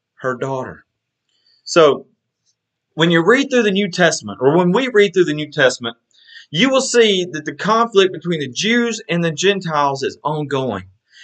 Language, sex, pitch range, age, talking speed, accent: English, male, 125-180 Hz, 30-49, 170 wpm, American